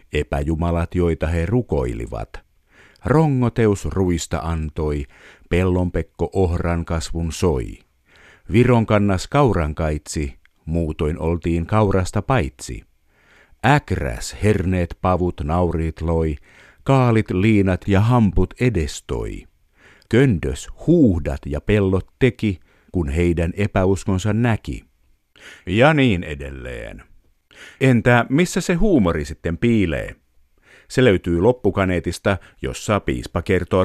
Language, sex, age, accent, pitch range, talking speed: Finnish, male, 50-69, native, 80-110 Hz, 95 wpm